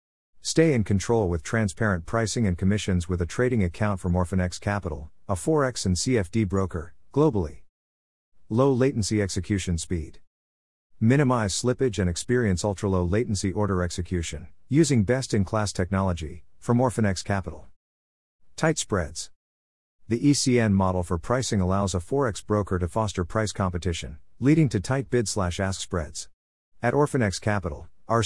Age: 50-69